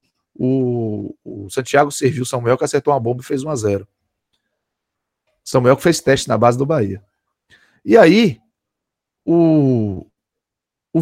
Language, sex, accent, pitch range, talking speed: Portuguese, male, Brazilian, 120-175 Hz, 130 wpm